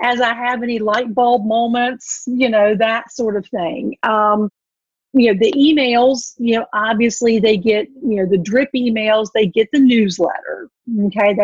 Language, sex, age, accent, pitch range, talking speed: English, female, 40-59, American, 215-265 Hz, 175 wpm